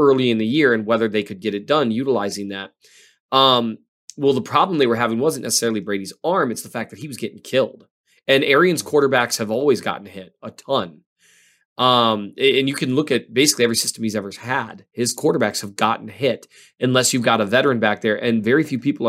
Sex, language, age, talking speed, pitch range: male, English, 20-39, 215 wpm, 105-130 Hz